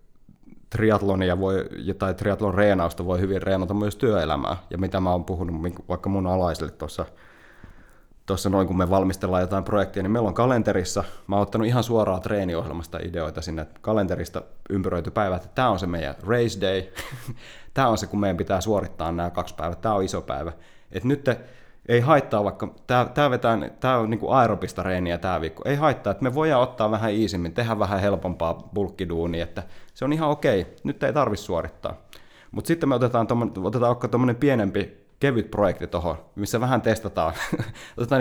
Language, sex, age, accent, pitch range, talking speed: Finnish, male, 30-49, native, 95-120 Hz, 170 wpm